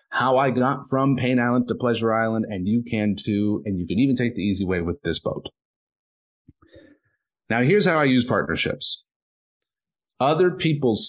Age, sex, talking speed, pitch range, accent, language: 30-49, male, 175 wpm, 100-135 Hz, American, English